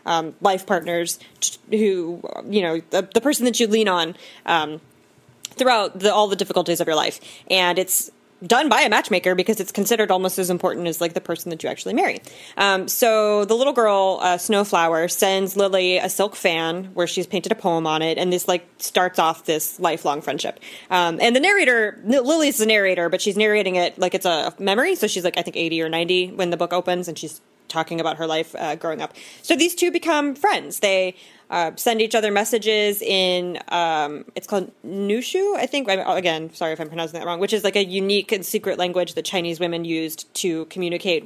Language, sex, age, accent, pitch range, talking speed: English, female, 20-39, American, 170-210 Hz, 210 wpm